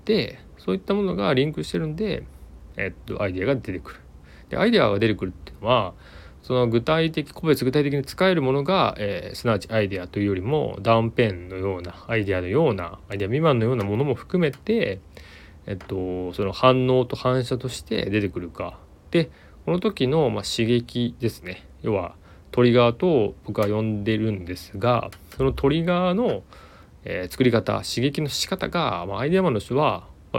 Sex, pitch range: male, 95-140 Hz